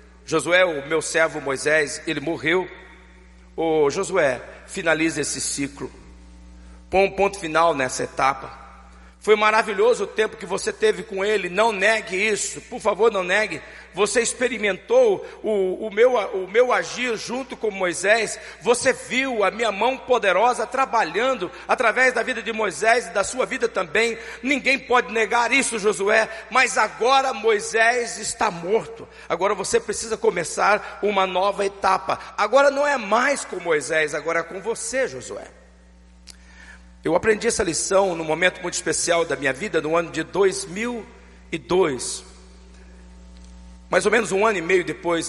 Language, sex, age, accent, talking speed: Portuguese, male, 50-69, Brazilian, 150 wpm